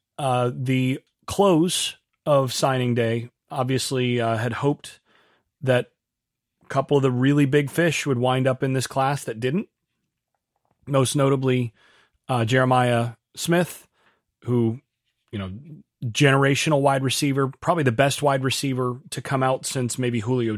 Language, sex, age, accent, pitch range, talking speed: English, male, 30-49, American, 125-145 Hz, 140 wpm